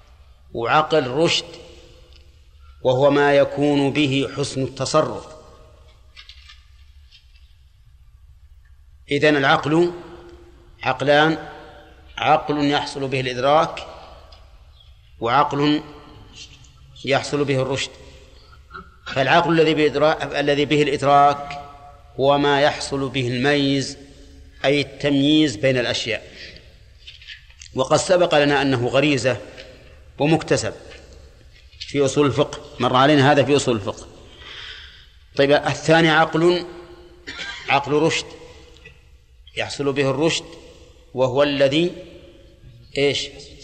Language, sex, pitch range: Arabic, male, 115-150 Hz